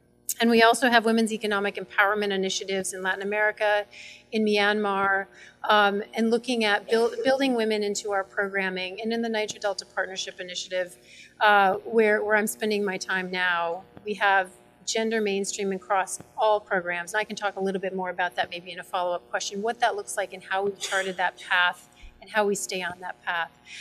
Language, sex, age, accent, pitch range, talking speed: English, female, 40-59, American, 195-235 Hz, 195 wpm